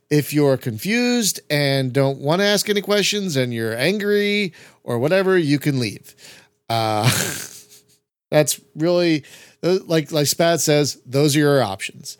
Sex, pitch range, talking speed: male, 140-200 Hz, 145 wpm